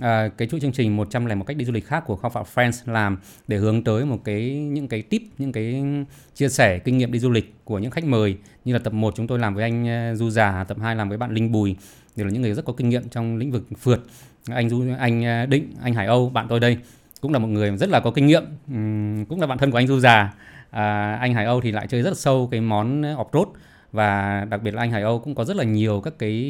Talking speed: 270 wpm